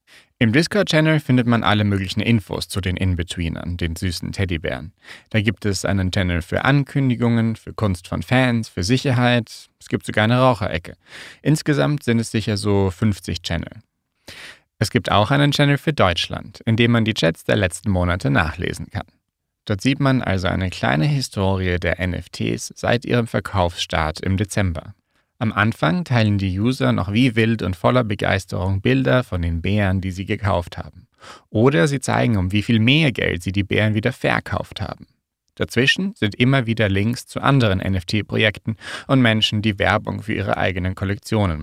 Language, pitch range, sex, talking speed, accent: German, 95-120 Hz, male, 170 wpm, German